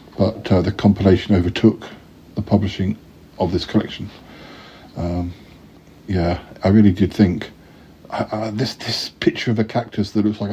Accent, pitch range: British, 95-115 Hz